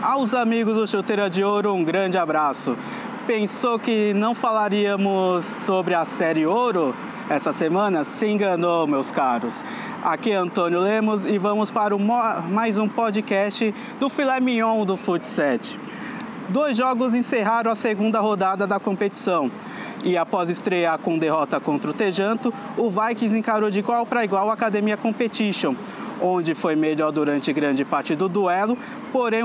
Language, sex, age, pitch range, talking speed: Portuguese, male, 20-39, 190-235 Hz, 150 wpm